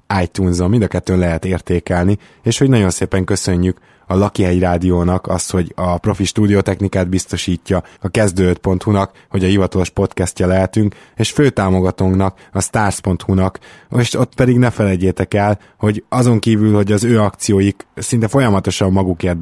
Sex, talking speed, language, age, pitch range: male, 145 wpm, Hungarian, 20-39, 90-105 Hz